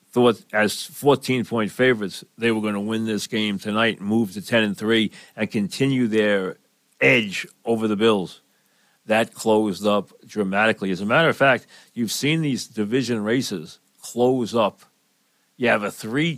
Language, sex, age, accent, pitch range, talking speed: English, male, 50-69, American, 110-140 Hz, 165 wpm